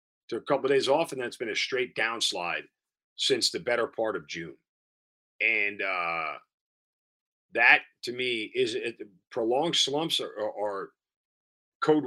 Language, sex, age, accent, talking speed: English, male, 40-59, American, 150 wpm